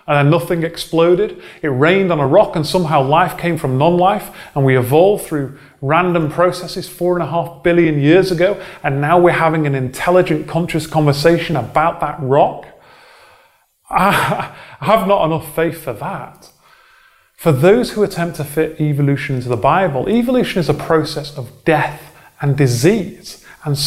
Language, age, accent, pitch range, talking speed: English, 30-49, British, 145-185 Hz, 160 wpm